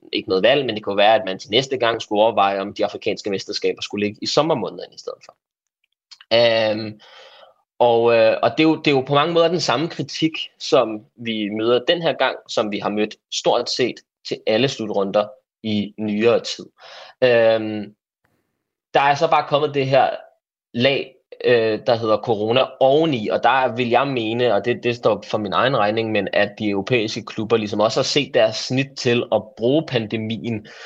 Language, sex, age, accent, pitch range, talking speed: Danish, male, 20-39, native, 110-155 Hz, 195 wpm